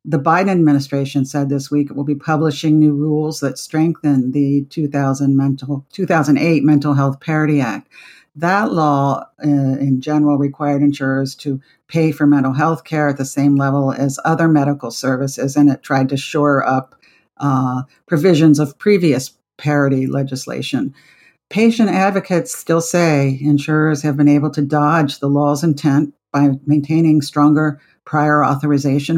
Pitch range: 140-155 Hz